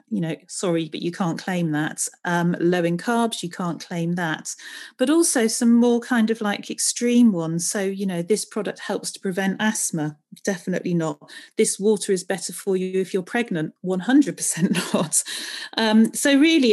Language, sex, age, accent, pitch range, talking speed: English, female, 40-59, British, 175-220 Hz, 180 wpm